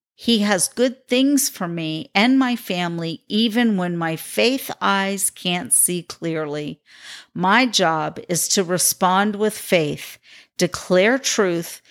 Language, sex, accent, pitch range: English, female, American, 175-220 Hz